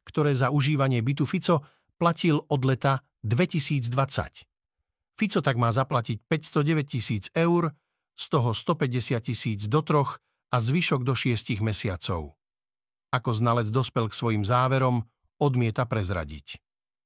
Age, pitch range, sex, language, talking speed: 50-69, 120-150 Hz, male, Slovak, 125 wpm